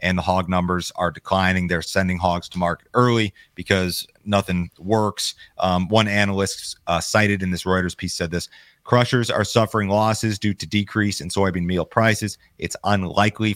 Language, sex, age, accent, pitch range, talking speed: English, male, 30-49, American, 90-105 Hz, 175 wpm